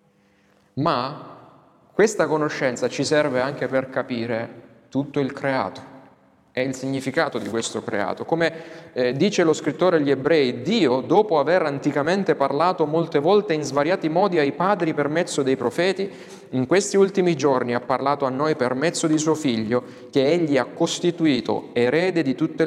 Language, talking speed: Italian, 155 wpm